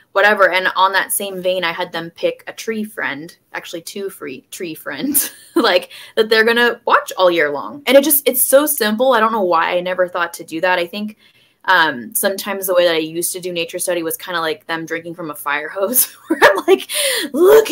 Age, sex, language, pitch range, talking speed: 20-39, female, English, 175-255 Hz, 235 wpm